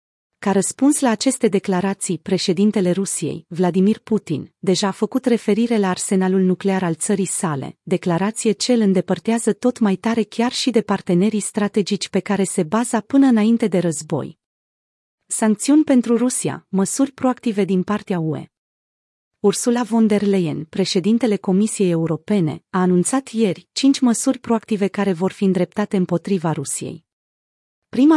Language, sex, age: Romanian, female, 30-49